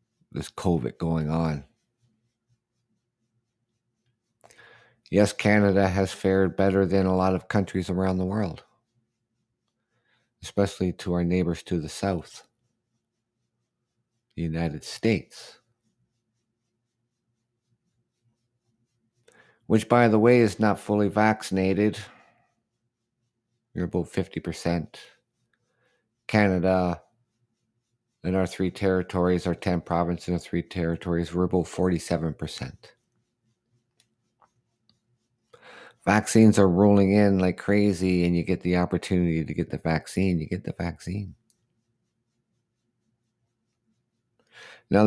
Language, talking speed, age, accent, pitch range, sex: English, 95 wpm, 50-69, American, 90-115 Hz, male